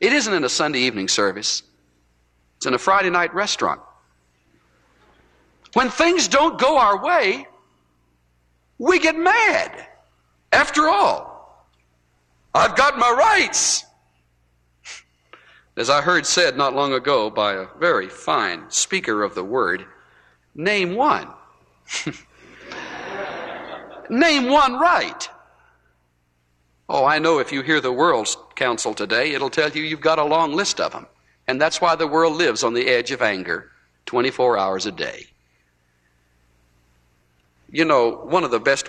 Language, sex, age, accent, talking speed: English, male, 60-79, American, 135 wpm